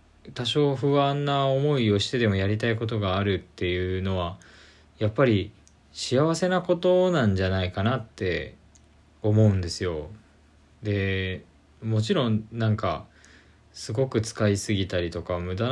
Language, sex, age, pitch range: Japanese, male, 20-39, 90-115 Hz